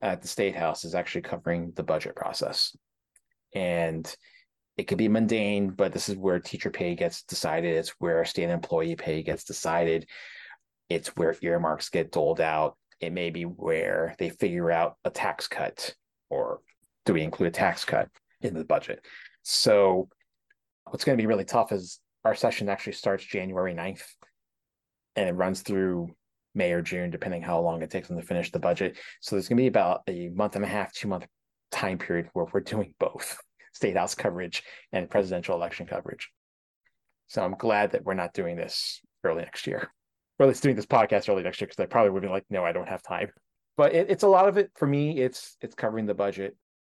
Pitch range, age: 85-120 Hz, 30-49